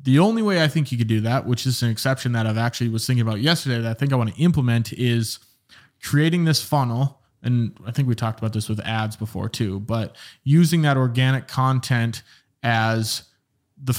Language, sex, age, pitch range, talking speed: English, male, 20-39, 115-135 Hz, 210 wpm